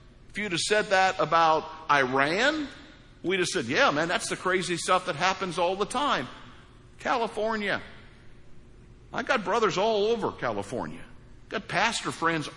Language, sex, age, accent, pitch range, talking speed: English, male, 60-79, American, 175-235 Hz, 155 wpm